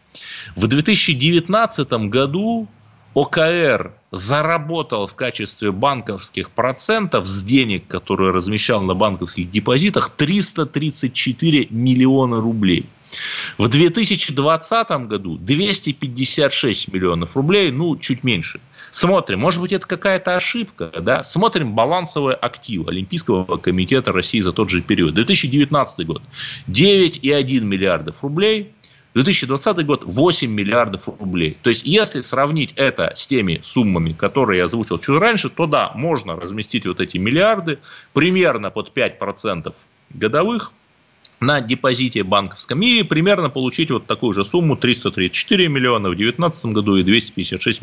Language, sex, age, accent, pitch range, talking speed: Russian, male, 30-49, native, 105-170 Hz, 120 wpm